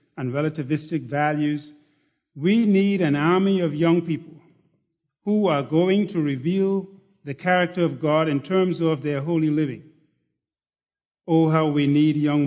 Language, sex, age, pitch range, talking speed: English, male, 50-69, 145-170 Hz, 145 wpm